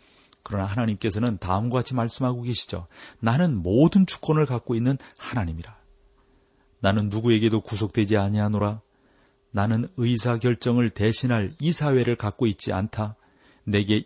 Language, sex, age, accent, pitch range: Korean, male, 40-59, native, 100-125 Hz